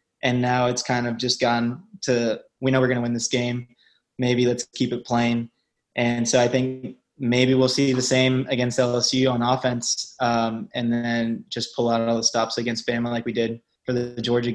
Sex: male